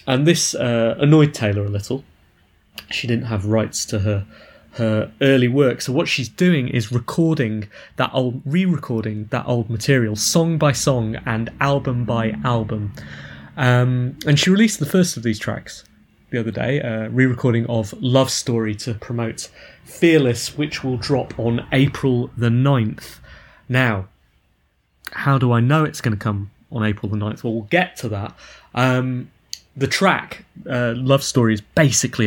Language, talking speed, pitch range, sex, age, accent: English, 165 wpm, 110-135 Hz, male, 20-39, British